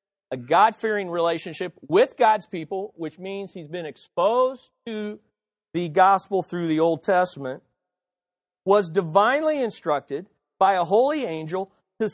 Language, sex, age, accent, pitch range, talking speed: English, male, 40-59, American, 165-225 Hz, 130 wpm